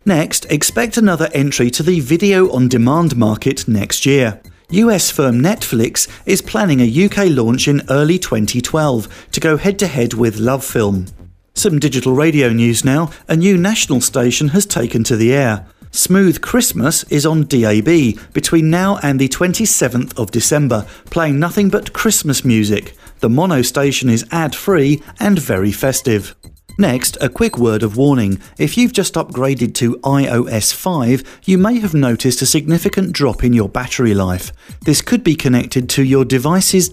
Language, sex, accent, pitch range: English, male, British, 120-170 Hz